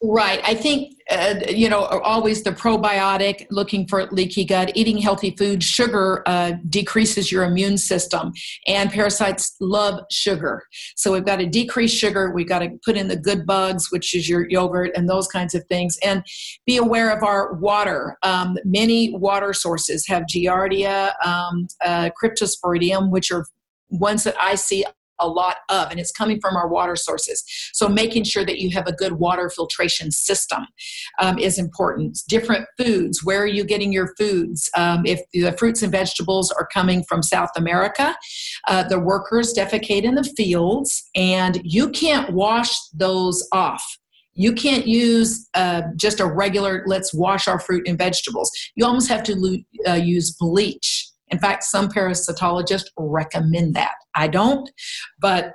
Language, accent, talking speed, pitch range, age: English, American, 170 wpm, 180-210 Hz, 50-69